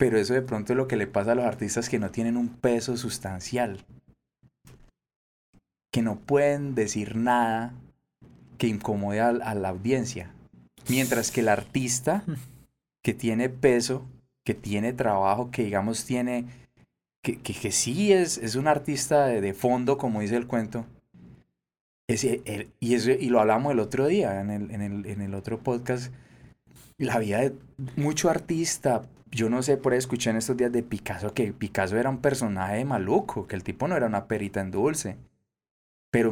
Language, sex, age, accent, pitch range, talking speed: Spanish, male, 20-39, Colombian, 110-130 Hz, 180 wpm